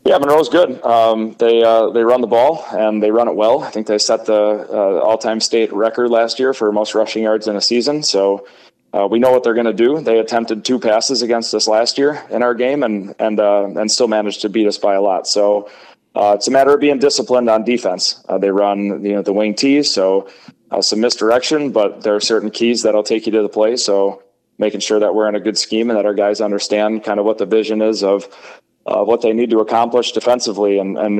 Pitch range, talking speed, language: 105-120 Hz, 250 wpm, English